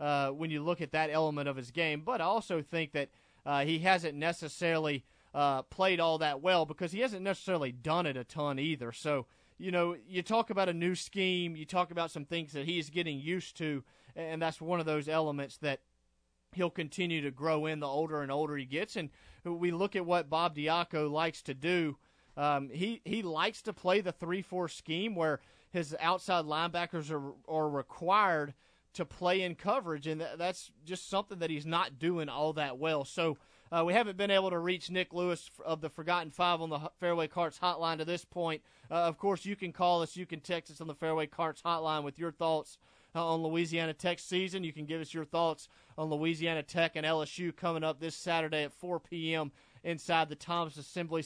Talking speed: 215 wpm